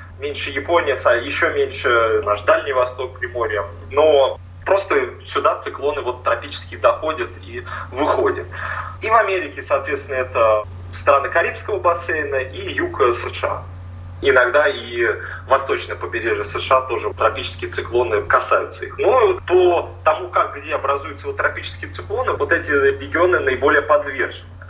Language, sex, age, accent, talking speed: Russian, male, 30-49, native, 130 wpm